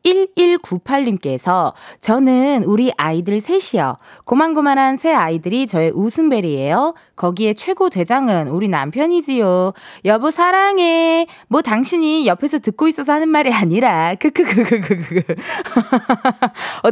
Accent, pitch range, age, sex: native, 190-295 Hz, 20-39, female